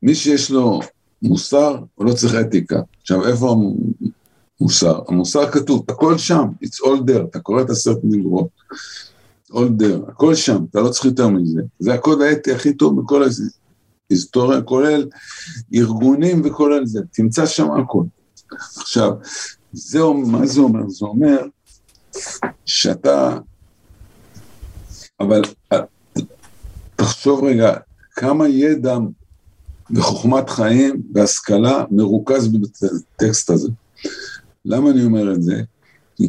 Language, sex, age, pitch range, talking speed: Hebrew, male, 60-79, 100-140 Hz, 115 wpm